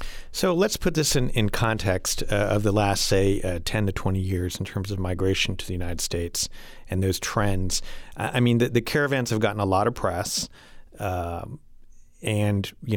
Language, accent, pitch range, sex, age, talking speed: English, American, 95-115 Hz, male, 40-59, 195 wpm